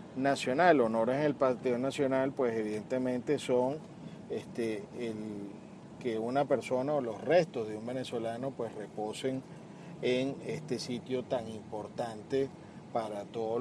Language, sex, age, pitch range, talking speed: Spanish, male, 40-59, 115-150 Hz, 130 wpm